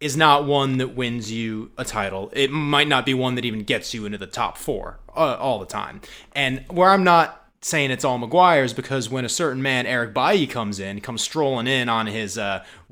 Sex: male